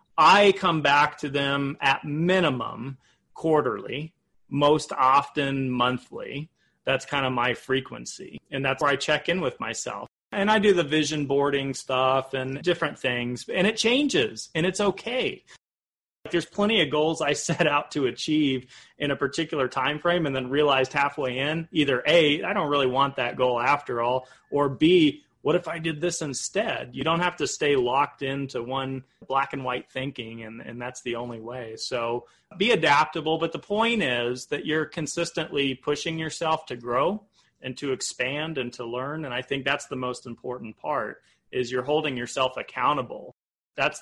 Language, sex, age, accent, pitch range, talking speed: English, male, 30-49, American, 130-160 Hz, 175 wpm